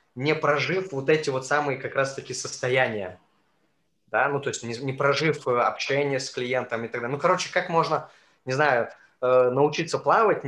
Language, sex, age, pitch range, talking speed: Russian, male, 20-39, 125-150 Hz, 170 wpm